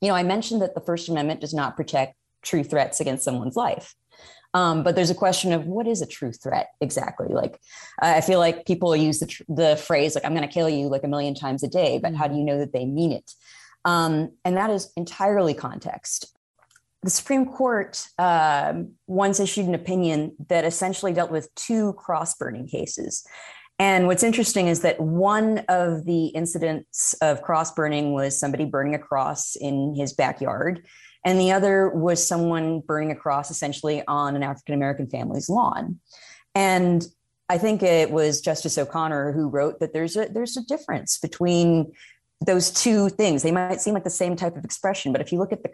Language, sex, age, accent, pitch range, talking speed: English, female, 30-49, American, 150-185 Hz, 195 wpm